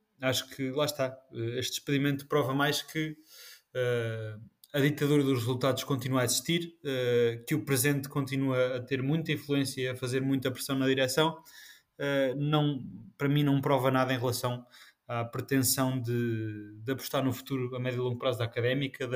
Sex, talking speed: male, 165 wpm